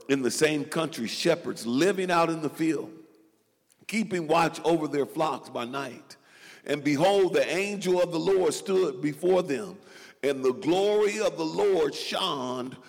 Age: 50-69